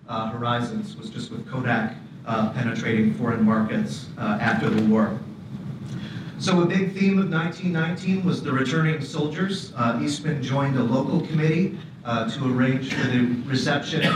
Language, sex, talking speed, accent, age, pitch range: English, male, 155 wpm, American, 40-59, 120-155 Hz